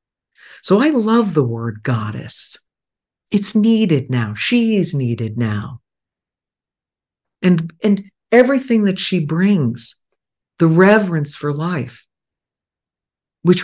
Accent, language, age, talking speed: American, English, 50-69, 100 wpm